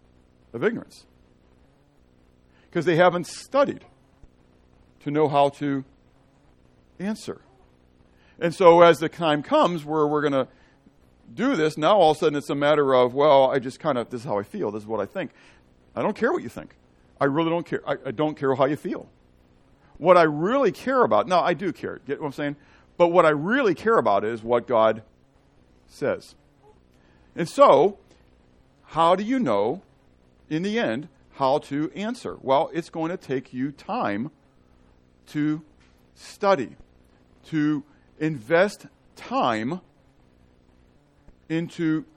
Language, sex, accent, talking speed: English, male, American, 160 wpm